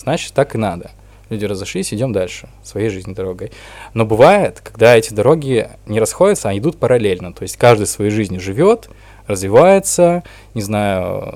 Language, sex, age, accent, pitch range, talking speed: Russian, male, 20-39, native, 100-120 Hz, 170 wpm